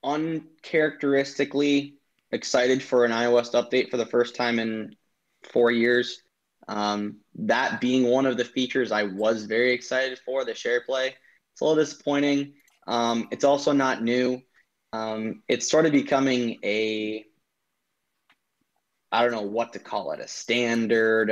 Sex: male